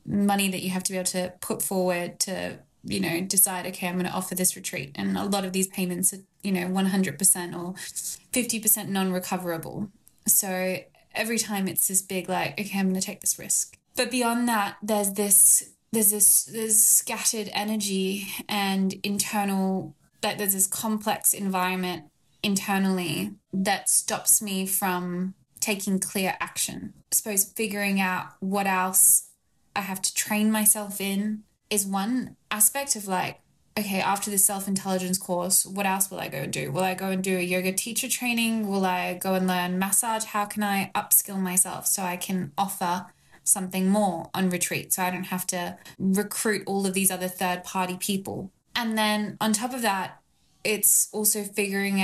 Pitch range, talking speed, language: 185-205 Hz, 175 wpm, English